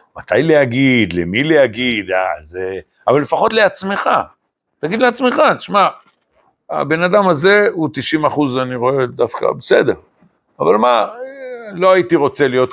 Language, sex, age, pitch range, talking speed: Hebrew, male, 60-79, 100-160 Hz, 125 wpm